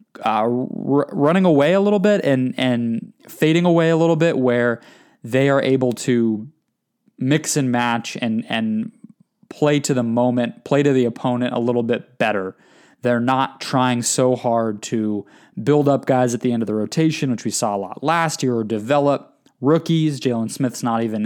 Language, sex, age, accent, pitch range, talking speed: English, male, 20-39, American, 120-150 Hz, 180 wpm